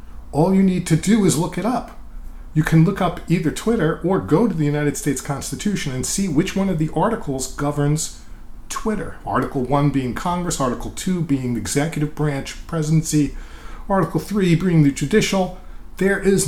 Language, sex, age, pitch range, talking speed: English, male, 40-59, 110-160 Hz, 180 wpm